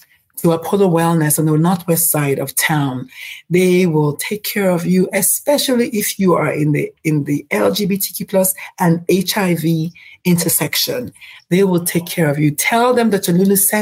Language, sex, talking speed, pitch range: English, female, 170 wpm, 165-200 Hz